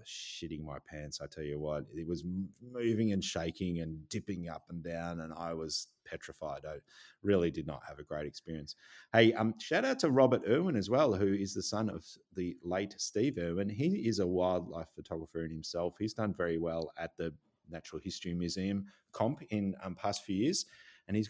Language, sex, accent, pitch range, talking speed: English, male, Australian, 80-100 Hz, 200 wpm